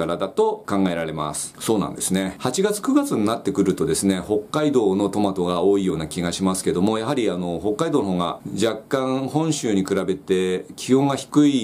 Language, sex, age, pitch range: Japanese, male, 40-59, 95-120 Hz